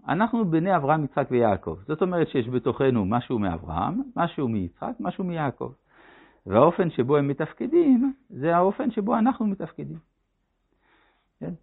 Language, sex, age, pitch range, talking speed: Hebrew, male, 60-79, 120-185 Hz, 130 wpm